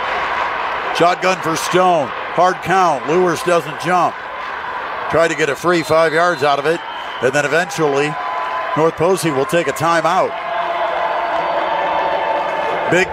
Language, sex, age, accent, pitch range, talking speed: English, male, 50-69, American, 165-200 Hz, 130 wpm